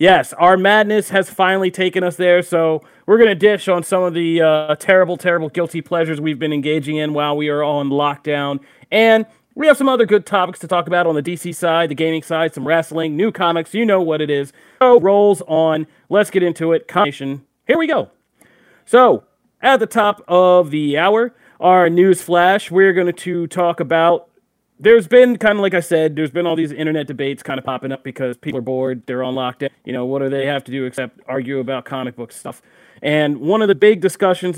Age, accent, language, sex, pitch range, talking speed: 40-59, American, English, male, 140-185 Hz, 220 wpm